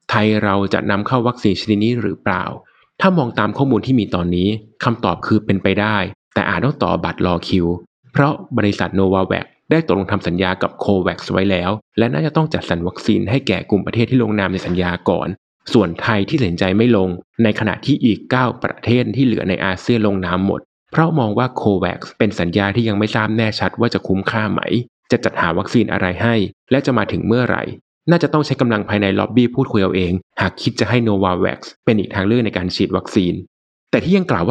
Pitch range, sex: 95-120 Hz, male